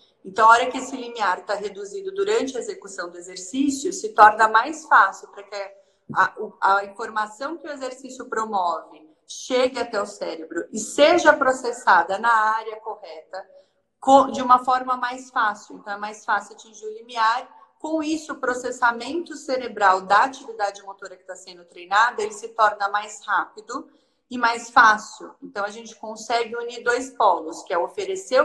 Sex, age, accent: female, 30-49, Brazilian